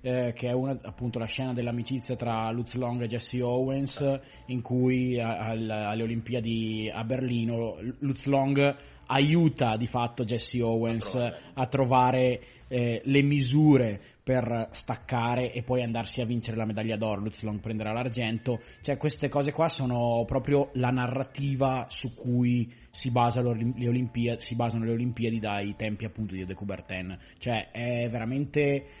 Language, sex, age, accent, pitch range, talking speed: Italian, male, 20-39, native, 110-130 Hz, 150 wpm